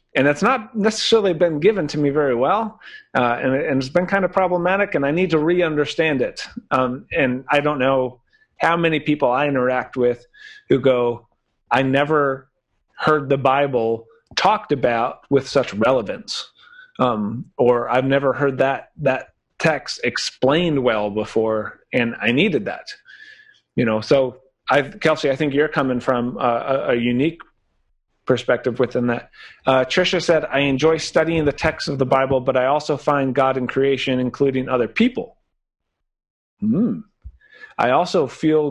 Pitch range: 125-160 Hz